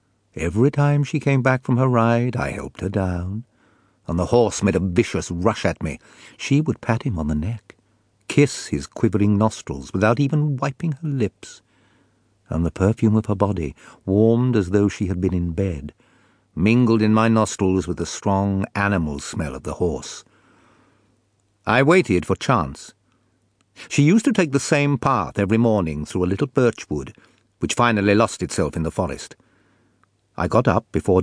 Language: English